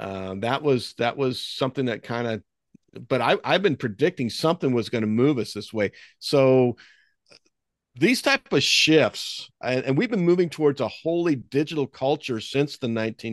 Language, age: English, 50-69